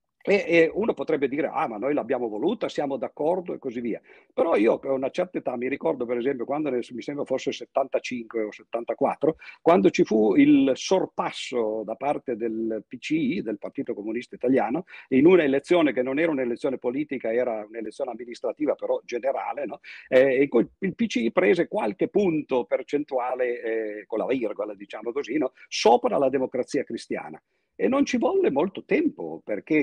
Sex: male